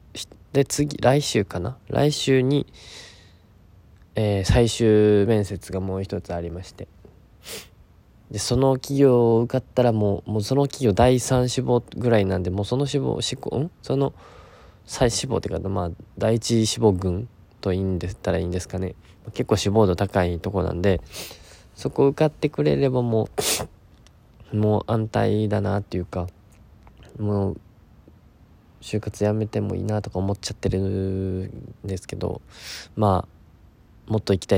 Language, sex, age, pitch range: Japanese, male, 20-39, 95-115 Hz